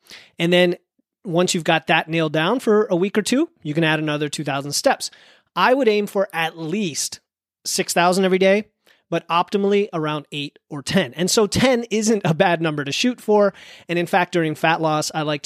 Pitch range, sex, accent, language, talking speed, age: 155-195 Hz, male, American, English, 200 wpm, 30-49